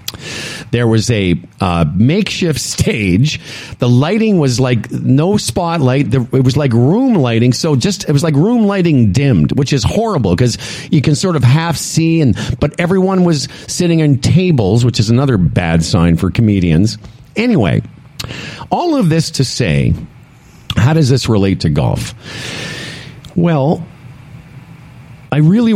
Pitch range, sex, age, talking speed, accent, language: 110-145 Hz, male, 50-69, 150 wpm, American, English